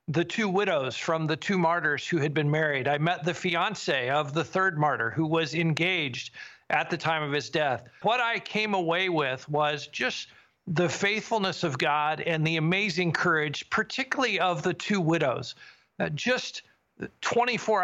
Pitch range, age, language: 150-185 Hz, 50-69, English